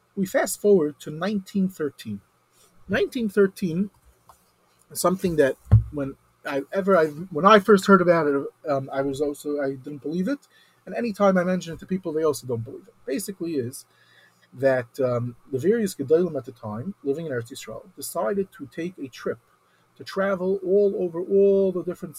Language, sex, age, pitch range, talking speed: English, male, 40-59, 135-200 Hz, 180 wpm